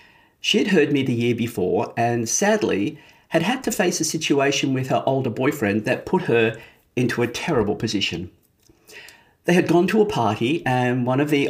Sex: male